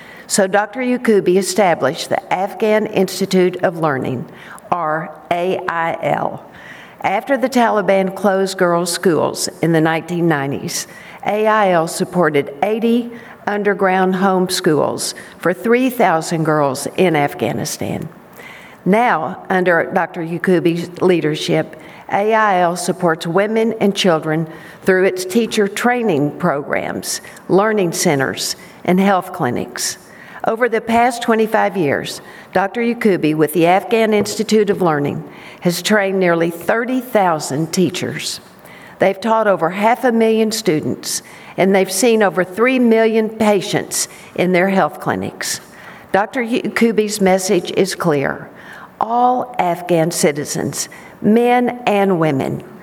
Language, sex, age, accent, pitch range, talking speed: English, female, 60-79, American, 175-215 Hz, 110 wpm